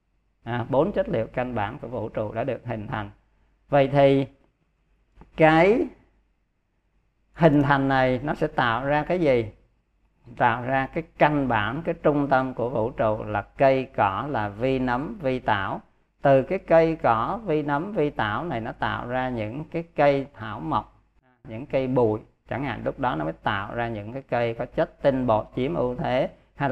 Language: Vietnamese